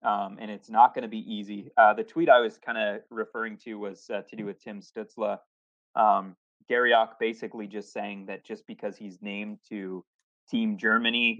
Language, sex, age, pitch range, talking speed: English, male, 20-39, 100-140 Hz, 195 wpm